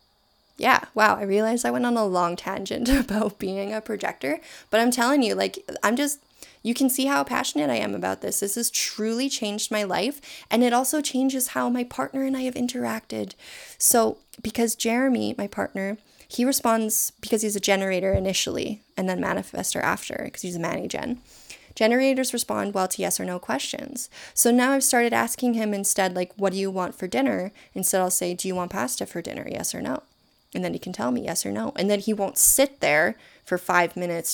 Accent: American